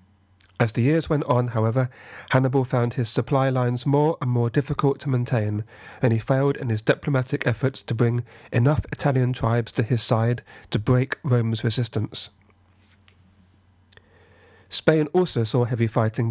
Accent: British